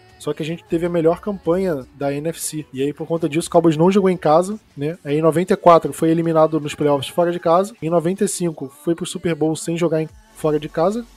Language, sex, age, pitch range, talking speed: Portuguese, male, 20-39, 150-175 Hz, 235 wpm